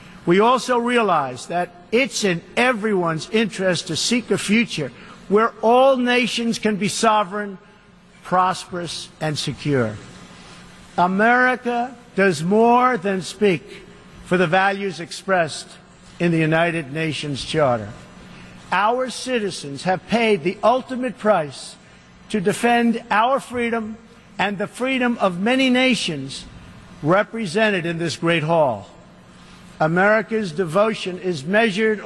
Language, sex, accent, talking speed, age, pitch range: English, male, American, 115 wpm, 50-69, 175-225 Hz